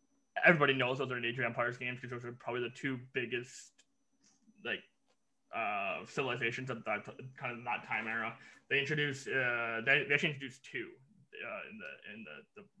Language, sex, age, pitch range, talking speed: English, male, 20-39, 120-135 Hz, 185 wpm